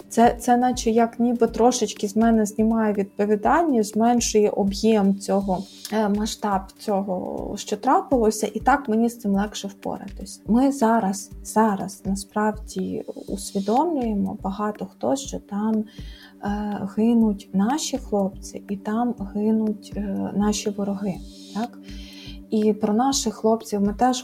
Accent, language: native, Ukrainian